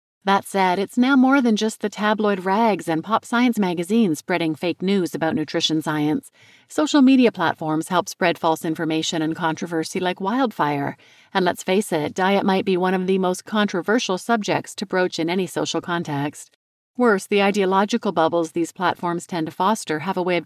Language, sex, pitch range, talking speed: English, female, 165-210 Hz, 185 wpm